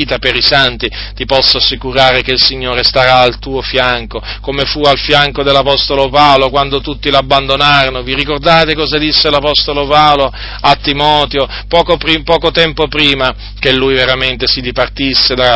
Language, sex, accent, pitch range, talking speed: Italian, male, native, 115-140 Hz, 155 wpm